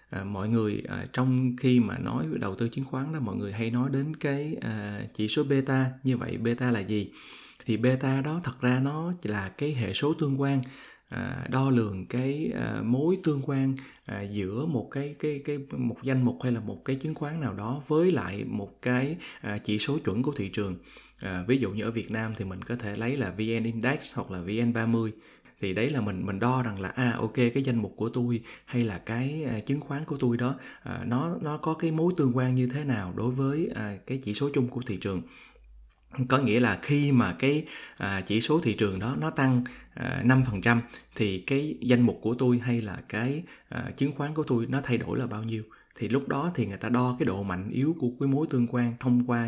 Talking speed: 230 wpm